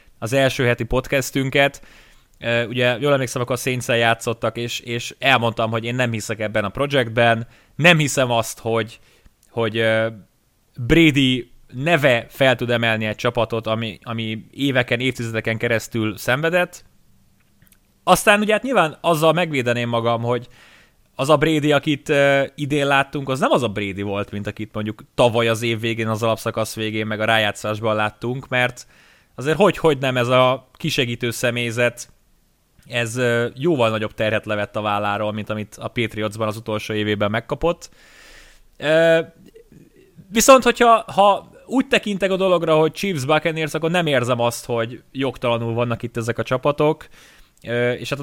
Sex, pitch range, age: male, 115-145 Hz, 20-39